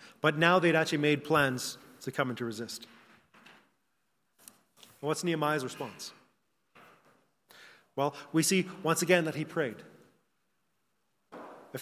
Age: 30-49